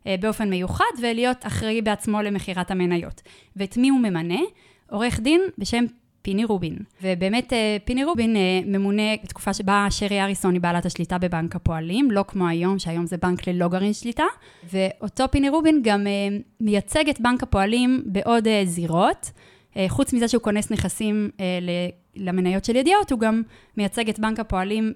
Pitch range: 190-235 Hz